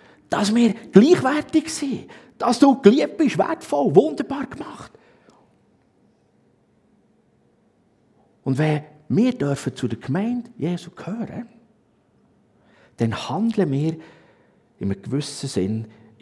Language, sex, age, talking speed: German, male, 50-69, 100 wpm